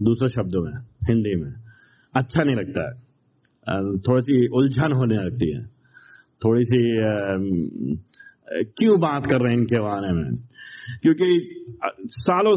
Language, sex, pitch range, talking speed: Hindi, male, 120-185 Hz, 130 wpm